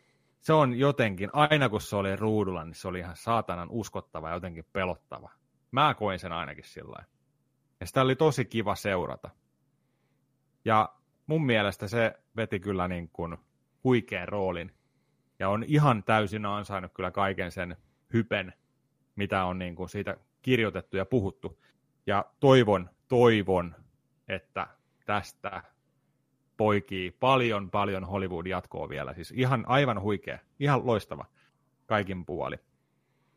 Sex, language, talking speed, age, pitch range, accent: male, Finnish, 130 wpm, 30-49, 95-125 Hz, native